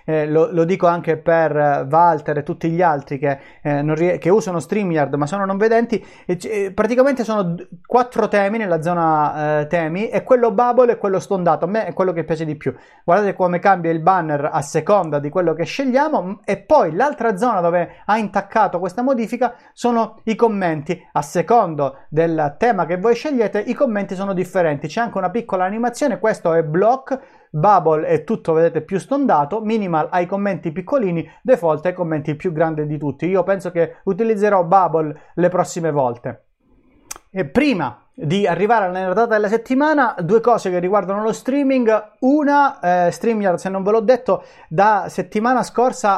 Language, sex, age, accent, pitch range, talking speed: Italian, male, 30-49, native, 170-225 Hz, 185 wpm